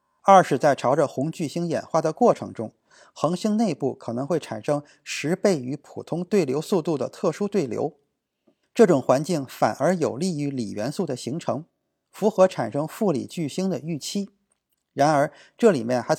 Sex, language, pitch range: male, Chinese, 140-200 Hz